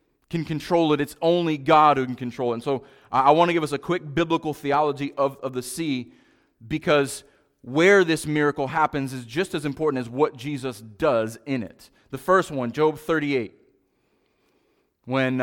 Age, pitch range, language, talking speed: 30-49, 140-180 Hz, English, 180 wpm